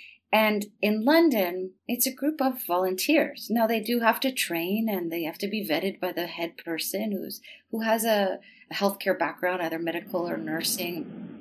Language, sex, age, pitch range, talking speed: English, female, 30-49, 180-215 Hz, 180 wpm